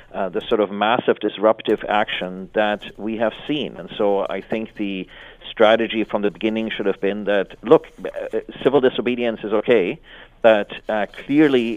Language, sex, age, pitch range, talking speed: English, male, 40-59, 95-110 Hz, 170 wpm